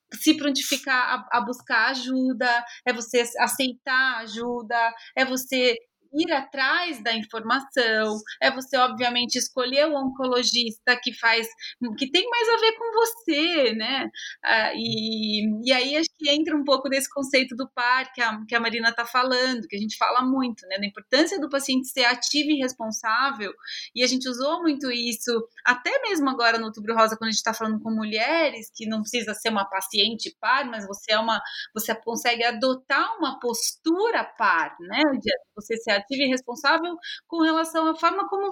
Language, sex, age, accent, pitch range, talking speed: Portuguese, female, 30-49, Brazilian, 225-285 Hz, 175 wpm